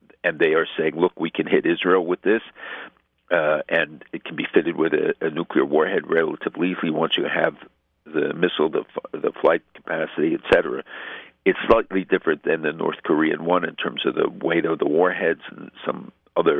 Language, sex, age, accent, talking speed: English, male, 60-79, American, 205 wpm